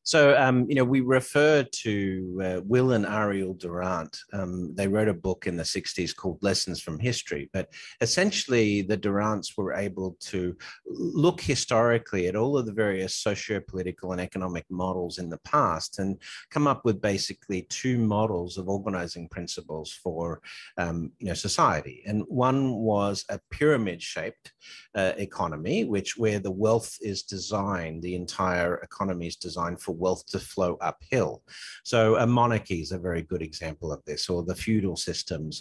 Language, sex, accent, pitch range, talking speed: English, male, Australian, 90-110 Hz, 160 wpm